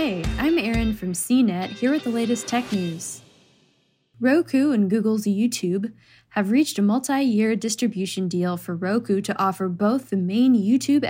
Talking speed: 155 wpm